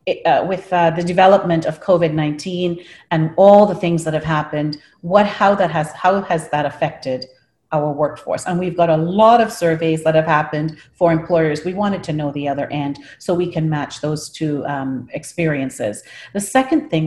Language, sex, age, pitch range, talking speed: English, female, 40-59, 150-185 Hz, 195 wpm